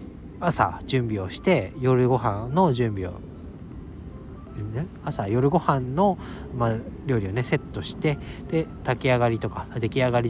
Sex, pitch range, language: male, 95-135 Hz, Japanese